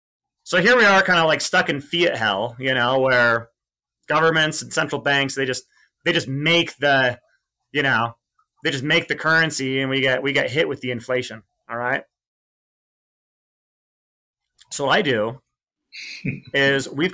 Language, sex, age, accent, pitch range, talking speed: English, male, 30-49, American, 130-165 Hz, 170 wpm